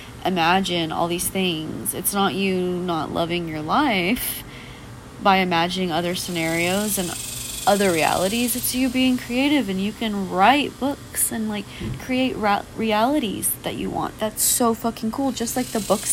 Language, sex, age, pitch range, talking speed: English, female, 30-49, 170-220 Hz, 155 wpm